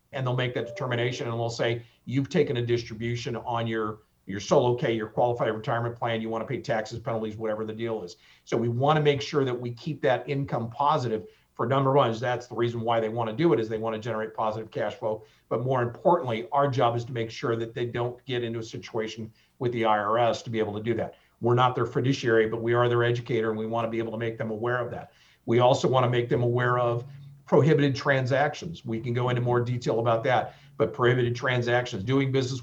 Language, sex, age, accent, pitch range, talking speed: English, male, 50-69, American, 110-130 Hz, 245 wpm